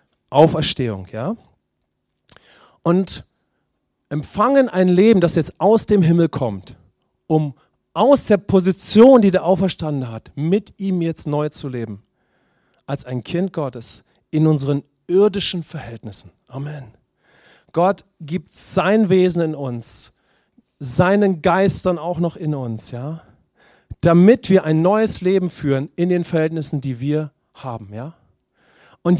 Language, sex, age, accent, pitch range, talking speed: English, male, 40-59, German, 140-195 Hz, 125 wpm